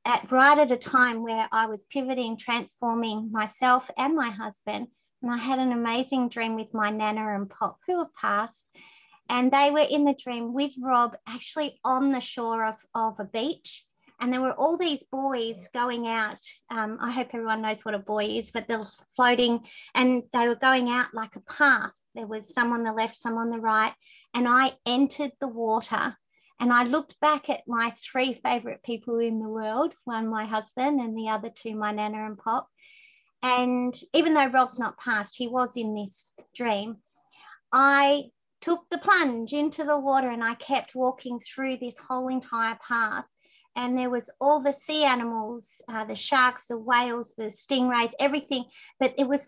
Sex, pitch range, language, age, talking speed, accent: female, 225-275 Hz, English, 30-49, 190 wpm, Australian